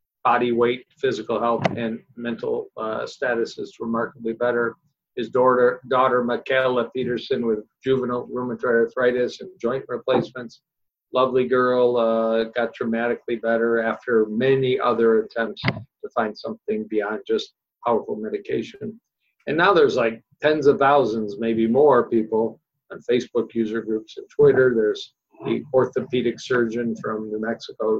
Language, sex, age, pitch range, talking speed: English, male, 50-69, 115-140 Hz, 135 wpm